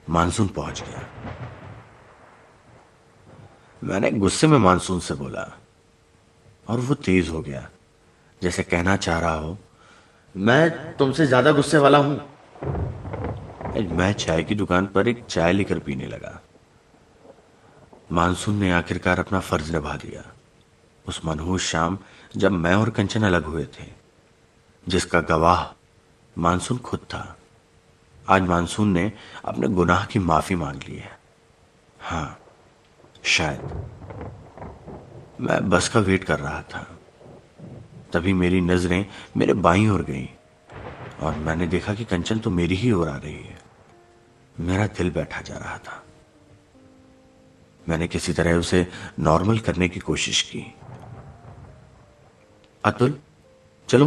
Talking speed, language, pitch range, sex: 125 wpm, Hindi, 85-105 Hz, male